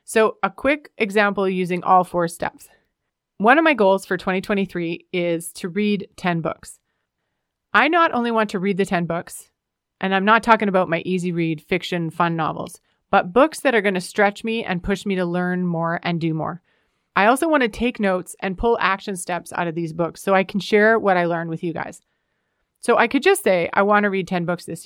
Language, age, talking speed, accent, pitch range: English, 30-49, 220 wpm, American, 175-215 Hz